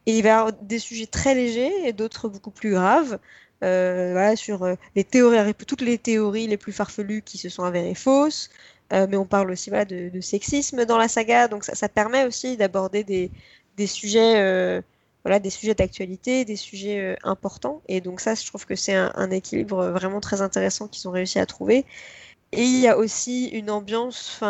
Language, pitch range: French, 190-225 Hz